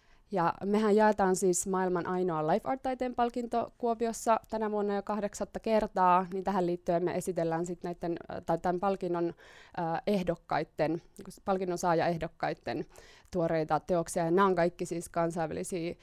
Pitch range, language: 180-220 Hz, Finnish